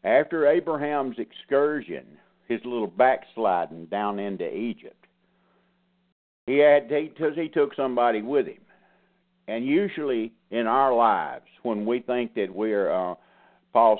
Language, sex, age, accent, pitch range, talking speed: English, male, 50-69, American, 110-180 Hz, 125 wpm